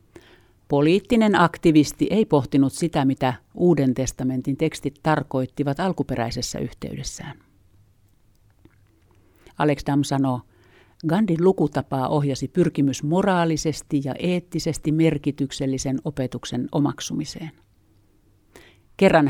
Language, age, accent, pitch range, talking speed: Finnish, 50-69, native, 125-160 Hz, 80 wpm